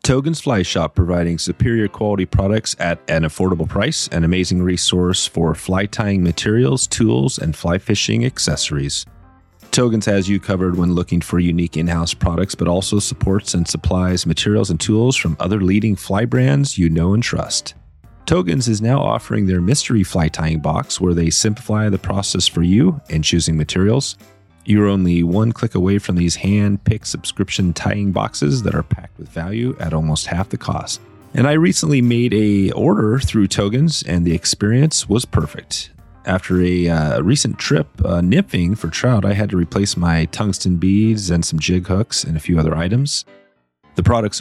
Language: English